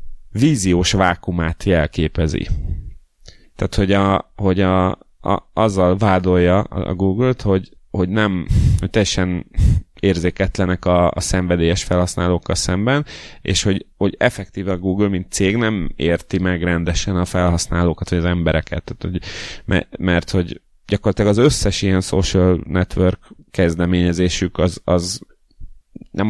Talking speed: 130 wpm